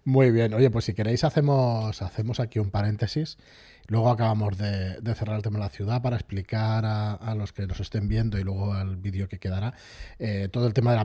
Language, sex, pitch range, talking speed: Spanish, male, 100-125 Hz, 230 wpm